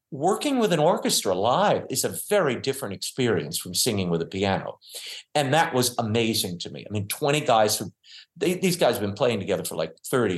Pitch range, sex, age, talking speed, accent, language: 115-150 Hz, male, 50-69, 200 wpm, American, English